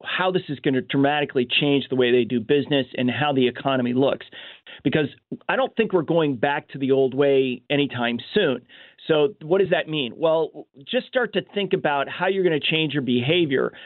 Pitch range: 145-190 Hz